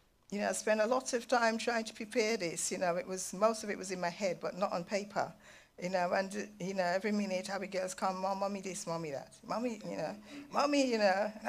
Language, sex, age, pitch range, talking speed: English, female, 50-69, 200-250 Hz, 250 wpm